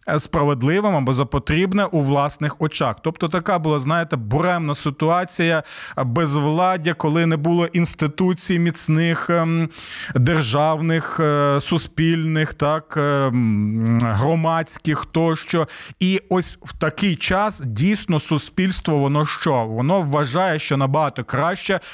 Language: Ukrainian